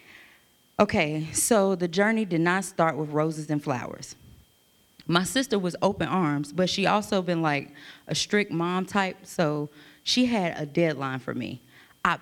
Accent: American